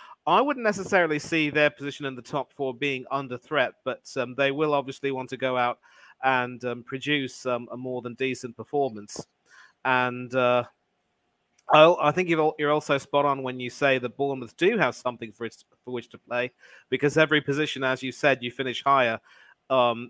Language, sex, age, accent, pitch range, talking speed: English, male, 40-59, British, 130-150 Hz, 190 wpm